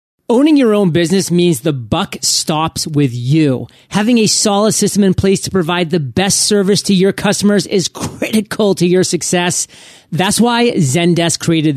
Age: 30-49